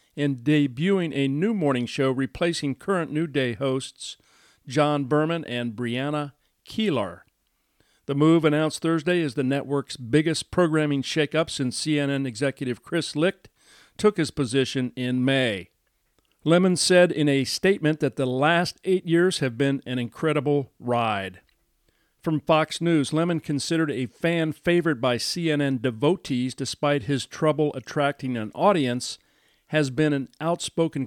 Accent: American